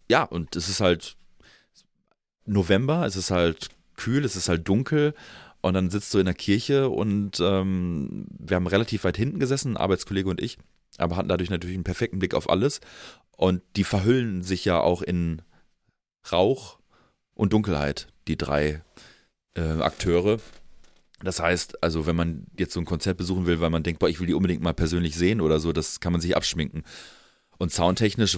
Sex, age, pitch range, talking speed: male, 30-49, 85-100 Hz, 180 wpm